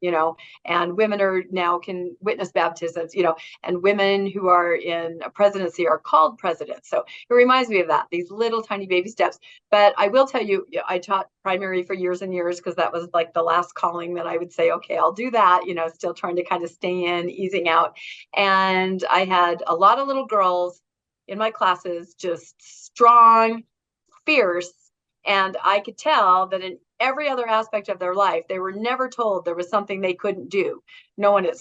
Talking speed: 210 wpm